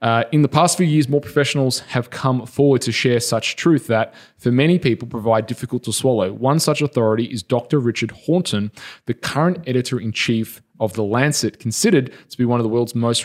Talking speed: 200 wpm